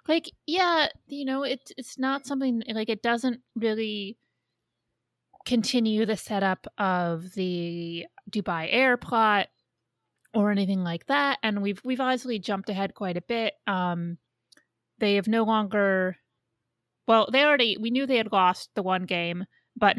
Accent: American